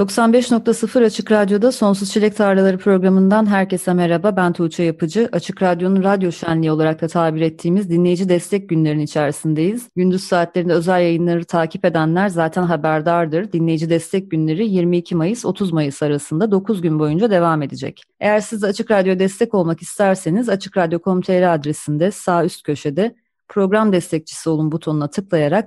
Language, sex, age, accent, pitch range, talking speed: Turkish, female, 30-49, native, 160-195 Hz, 145 wpm